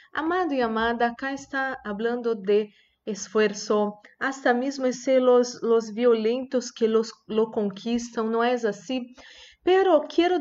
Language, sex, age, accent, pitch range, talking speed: Spanish, female, 40-59, Brazilian, 200-270 Hz, 125 wpm